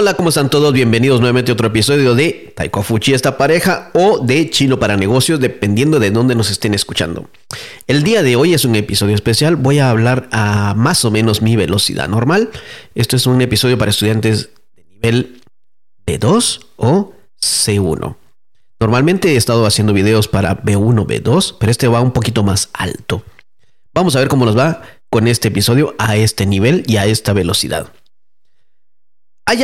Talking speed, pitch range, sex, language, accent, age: 175 wpm, 110-155 Hz, male, English, Mexican, 40-59